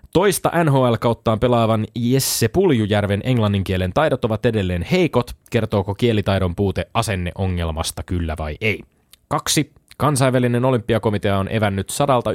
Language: Finnish